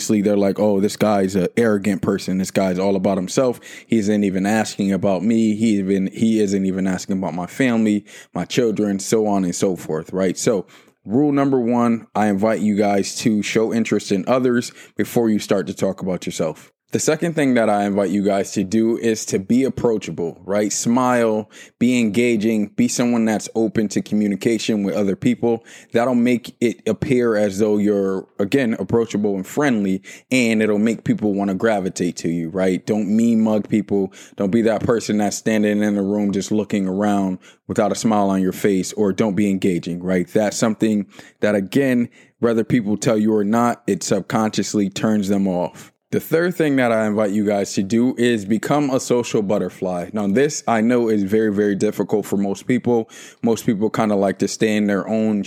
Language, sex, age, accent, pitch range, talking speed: English, male, 20-39, American, 100-115 Hz, 195 wpm